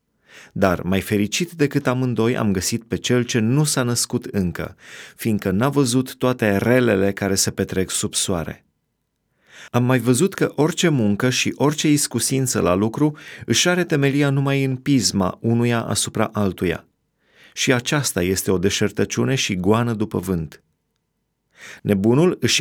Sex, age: male, 30-49